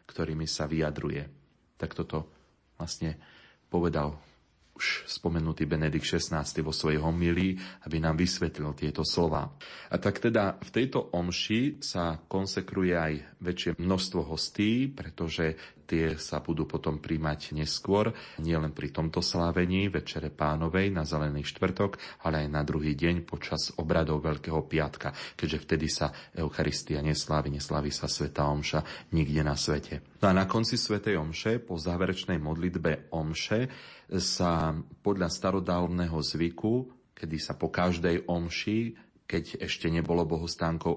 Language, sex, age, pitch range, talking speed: Slovak, male, 30-49, 75-90 Hz, 135 wpm